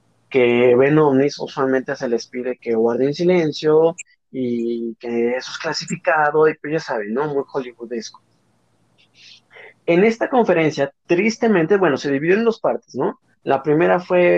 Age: 30-49